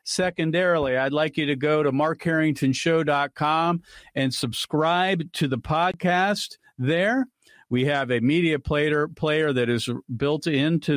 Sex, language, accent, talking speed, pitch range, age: male, English, American, 130 wpm, 130-155 Hz, 50-69